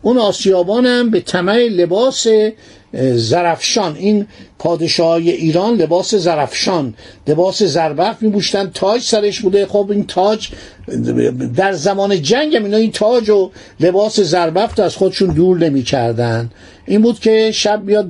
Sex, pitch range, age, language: male, 165-210 Hz, 50-69, Persian